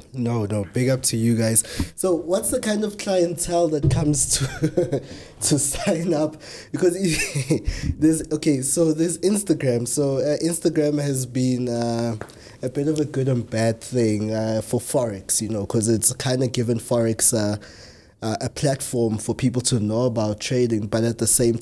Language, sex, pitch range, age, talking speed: English, male, 115-145 Hz, 20-39, 175 wpm